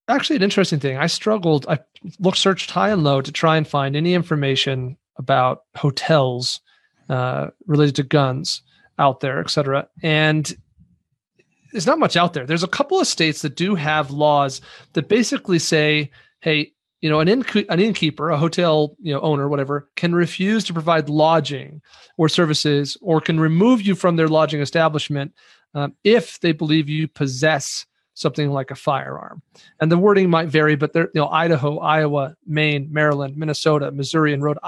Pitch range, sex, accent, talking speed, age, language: 145-170 Hz, male, American, 175 wpm, 40-59, English